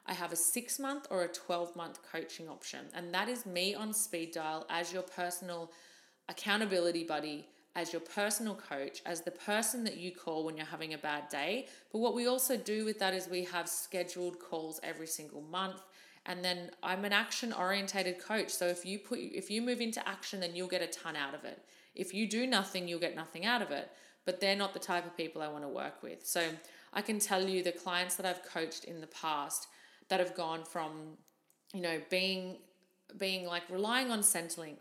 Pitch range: 165-190 Hz